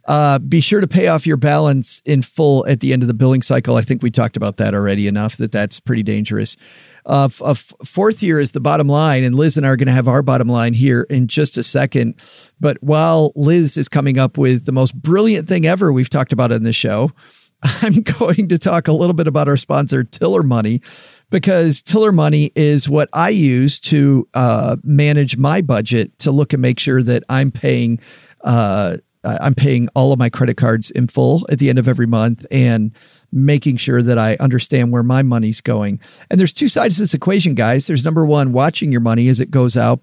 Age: 40-59